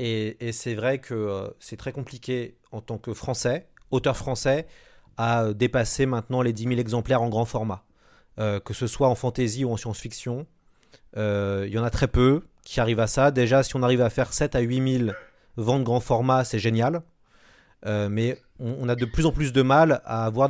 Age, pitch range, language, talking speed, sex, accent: 30-49, 115-135 Hz, French, 215 wpm, male, French